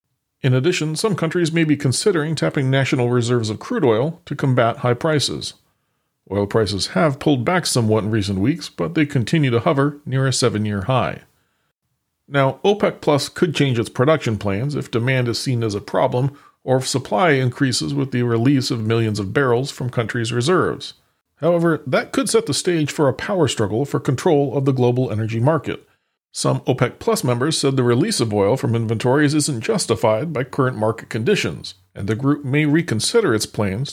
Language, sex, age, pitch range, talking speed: English, male, 40-59, 110-150 Hz, 185 wpm